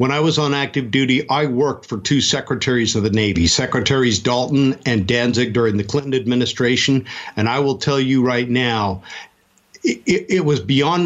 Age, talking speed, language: 50-69, 180 wpm, English